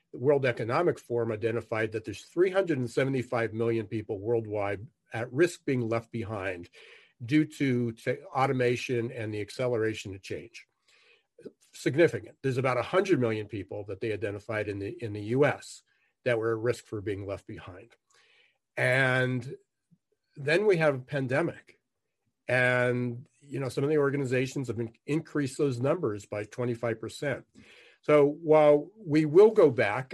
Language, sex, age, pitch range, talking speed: English, male, 50-69, 110-135 Hz, 145 wpm